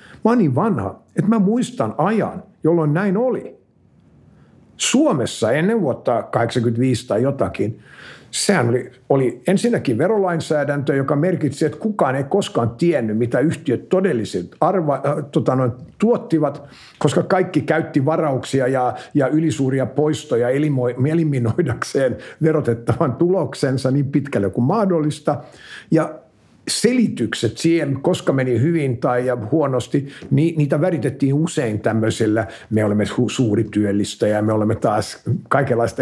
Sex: male